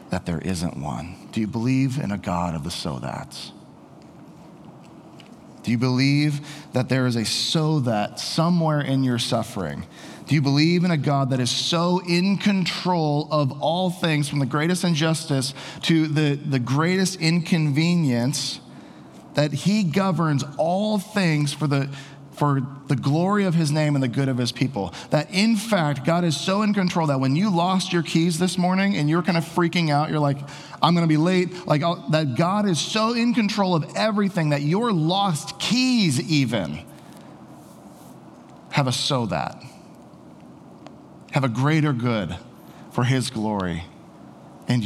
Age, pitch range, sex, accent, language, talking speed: 40-59, 135-175 Hz, male, American, English, 165 wpm